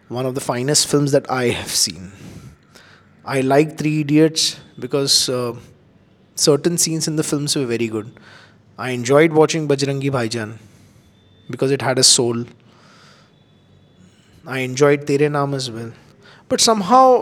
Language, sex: Hindi, male